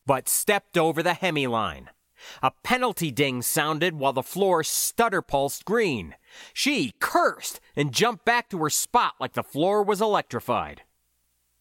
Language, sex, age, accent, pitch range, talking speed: English, male, 30-49, American, 135-210 Hz, 150 wpm